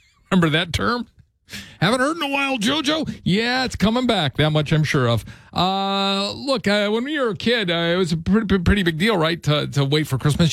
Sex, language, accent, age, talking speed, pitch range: male, English, American, 40-59, 230 wpm, 110-150 Hz